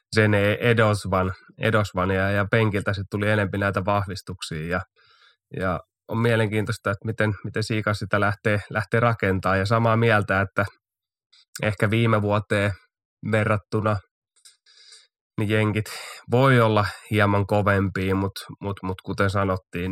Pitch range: 95-110 Hz